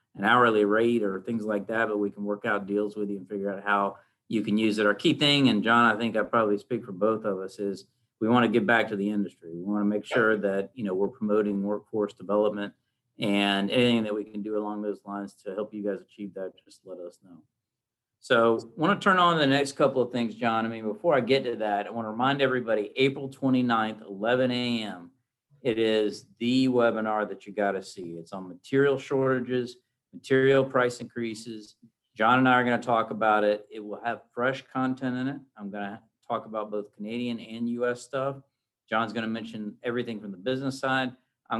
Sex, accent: male, American